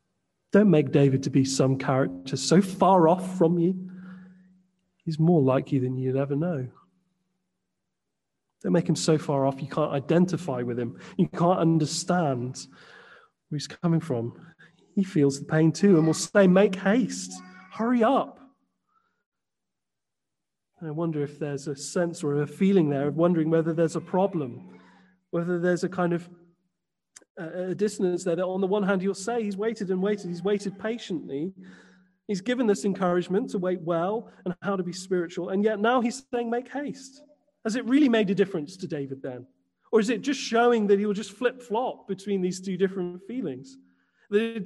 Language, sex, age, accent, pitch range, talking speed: English, male, 30-49, British, 165-210 Hz, 185 wpm